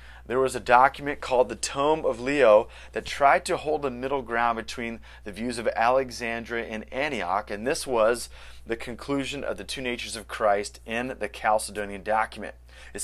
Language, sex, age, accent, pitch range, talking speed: English, male, 30-49, American, 95-130 Hz, 180 wpm